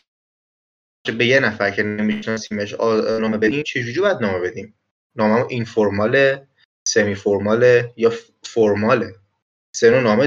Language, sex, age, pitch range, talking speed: Persian, male, 30-49, 115-180 Hz, 130 wpm